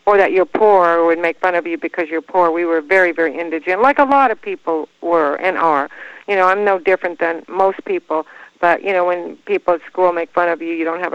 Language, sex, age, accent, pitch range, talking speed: English, female, 50-69, American, 160-185 Hz, 260 wpm